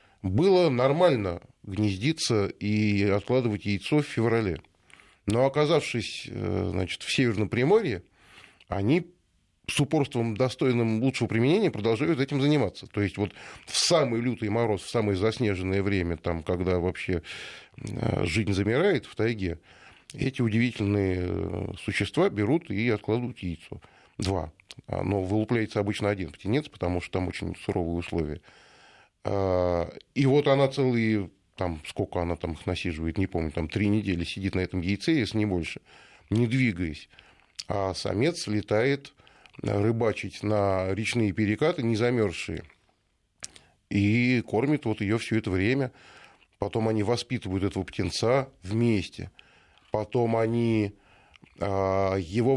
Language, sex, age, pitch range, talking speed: Russian, male, 20-39, 95-120 Hz, 125 wpm